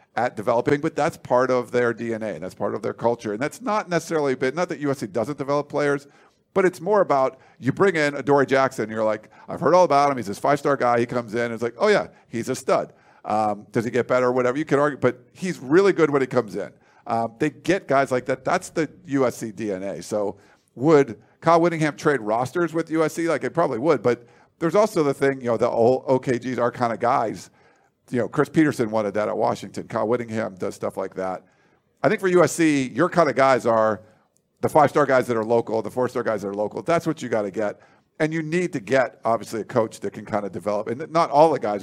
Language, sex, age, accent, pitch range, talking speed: English, male, 50-69, American, 115-150 Hz, 245 wpm